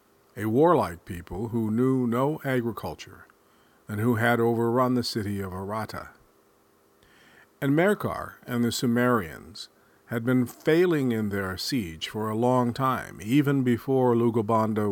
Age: 50-69